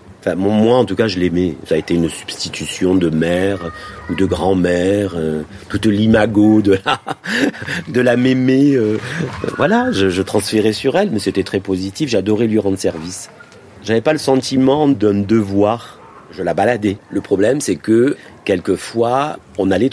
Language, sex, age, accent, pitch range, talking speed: French, male, 40-59, French, 95-130 Hz, 170 wpm